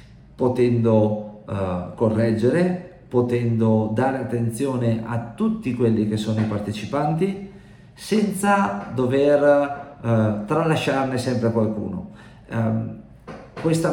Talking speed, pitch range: 80 wpm, 105-135 Hz